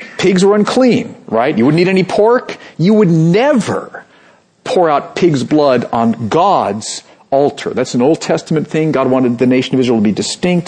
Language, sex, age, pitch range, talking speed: English, male, 50-69, 130-185 Hz, 185 wpm